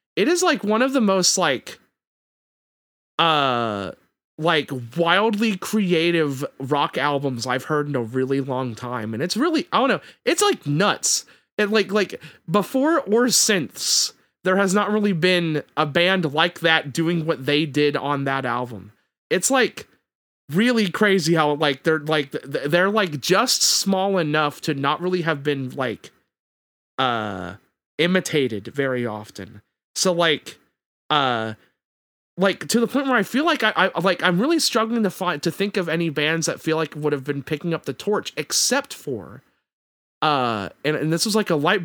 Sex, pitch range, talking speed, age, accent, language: male, 140-190 Hz, 170 wpm, 30-49, American, English